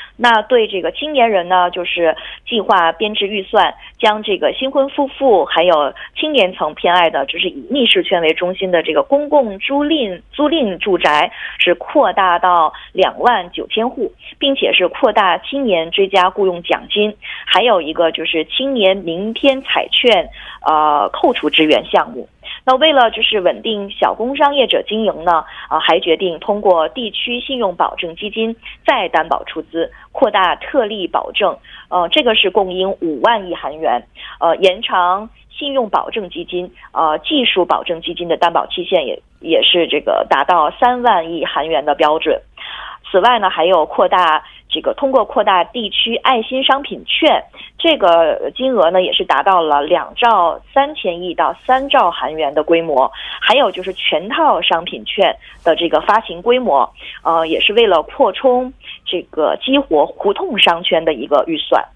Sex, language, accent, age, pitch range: female, Korean, Chinese, 20-39, 170-255 Hz